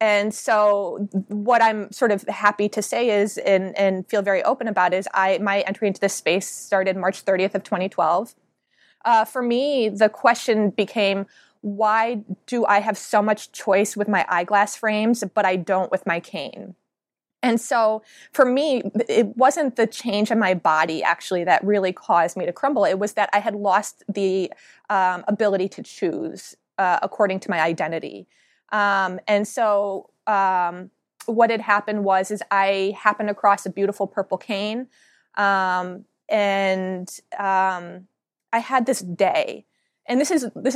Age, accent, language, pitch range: 20-39, American, English, 190-225 Hz